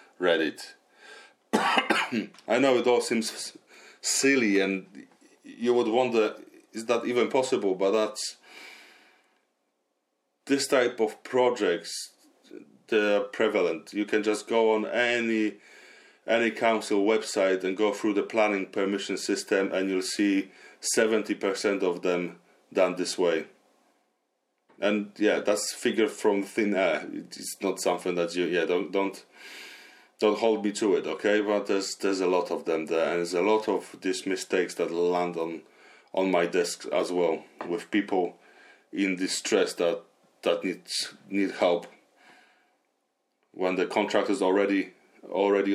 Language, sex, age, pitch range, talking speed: English, male, 30-49, 95-110 Hz, 140 wpm